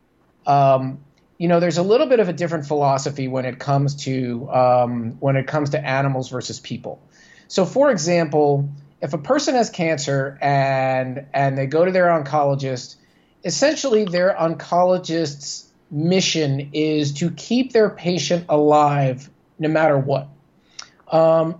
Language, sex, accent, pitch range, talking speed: English, male, American, 140-175 Hz, 145 wpm